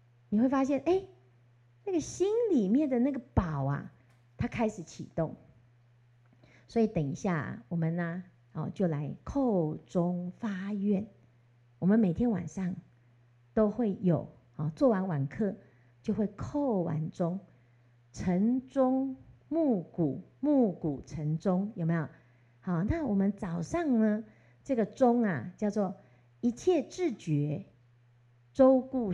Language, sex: Chinese, female